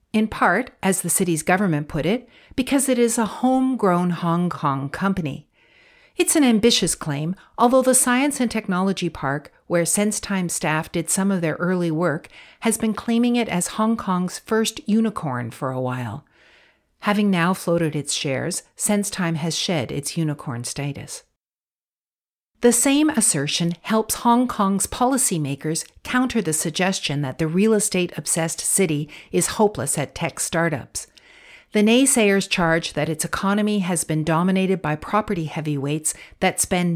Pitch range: 155-220 Hz